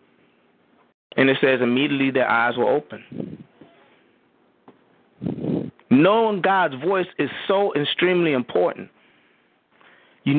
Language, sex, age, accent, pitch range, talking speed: English, male, 30-49, American, 145-210 Hz, 90 wpm